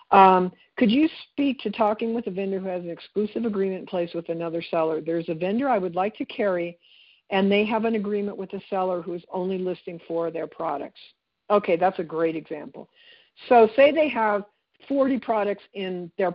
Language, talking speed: English, 205 wpm